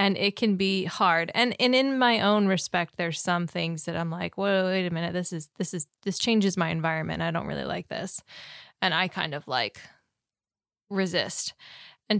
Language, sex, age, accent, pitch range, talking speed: English, female, 20-39, American, 175-205 Hz, 200 wpm